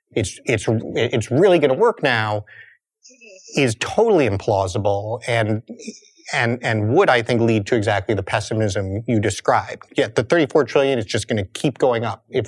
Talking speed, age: 165 wpm, 30-49